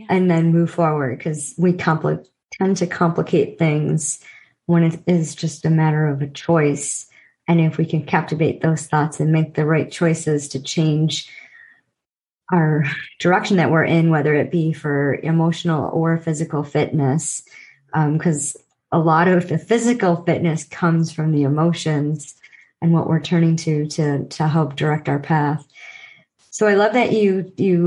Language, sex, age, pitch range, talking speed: English, male, 30-49, 155-180 Hz, 160 wpm